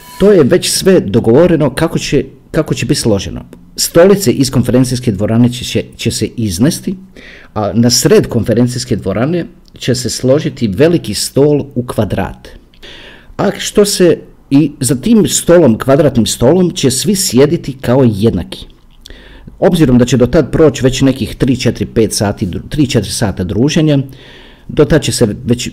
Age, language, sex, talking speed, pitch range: 50-69, Croatian, male, 140 wpm, 110-145 Hz